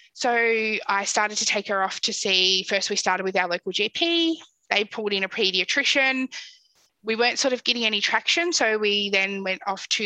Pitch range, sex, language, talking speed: 195-275 Hz, female, English, 205 wpm